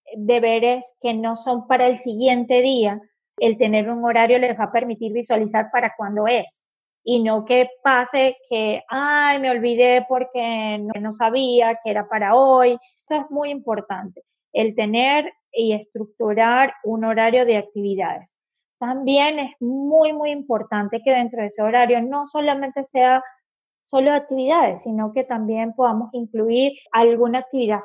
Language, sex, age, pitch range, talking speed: English, female, 20-39, 220-265 Hz, 150 wpm